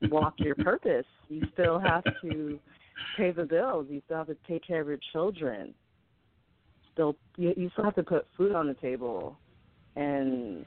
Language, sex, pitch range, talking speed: English, female, 115-150 Hz, 165 wpm